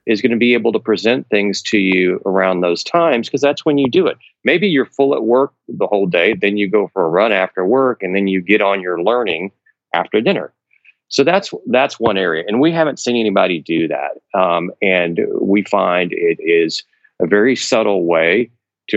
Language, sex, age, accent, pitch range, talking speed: English, male, 40-59, American, 90-120 Hz, 210 wpm